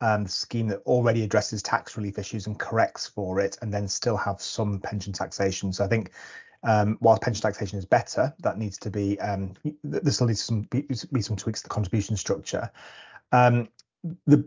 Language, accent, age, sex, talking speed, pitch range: English, British, 30-49, male, 205 wpm, 105-125 Hz